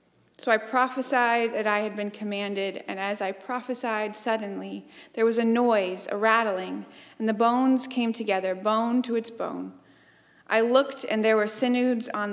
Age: 30-49